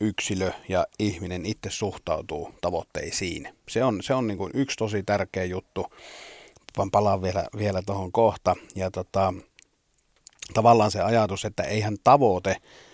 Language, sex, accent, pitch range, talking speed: Finnish, male, native, 100-115 Hz, 140 wpm